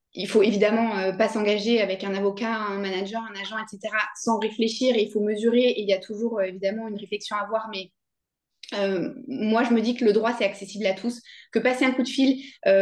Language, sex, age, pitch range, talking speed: French, female, 20-39, 205-255 Hz, 245 wpm